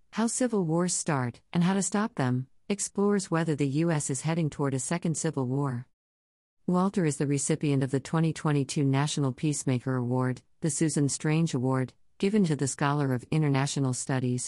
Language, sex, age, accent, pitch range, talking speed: English, female, 50-69, American, 130-165 Hz, 170 wpm